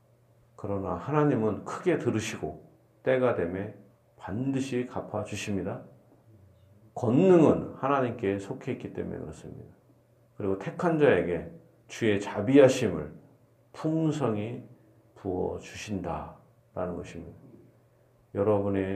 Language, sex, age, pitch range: Korean, male, 40-59, 95-115 Hz